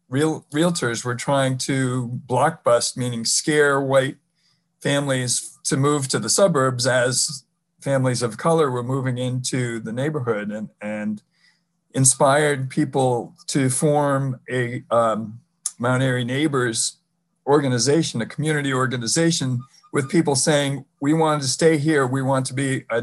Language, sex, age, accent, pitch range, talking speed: English, male, 50-69, American, 120-155 Hz, 135 wpm